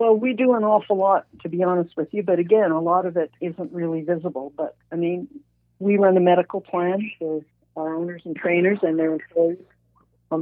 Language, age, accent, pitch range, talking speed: English, 50-69, American, 150-175 Hz, 215 wpm